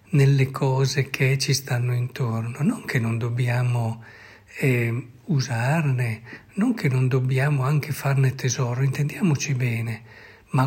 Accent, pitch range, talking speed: native, 125-150 Hz, 125 wpm